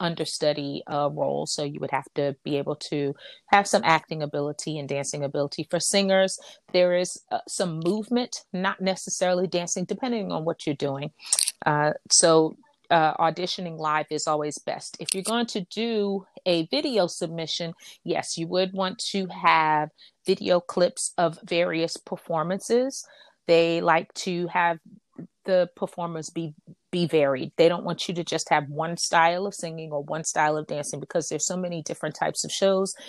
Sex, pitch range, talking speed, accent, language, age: female, 155-190 Hz, 170 wpm, American, English, 30-49